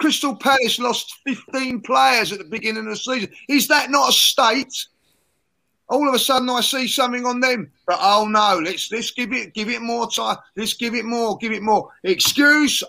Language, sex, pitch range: English, male, 200-260 Hz